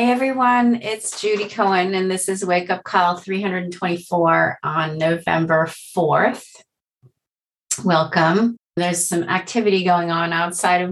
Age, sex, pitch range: 30-49, female, 150-185 Hz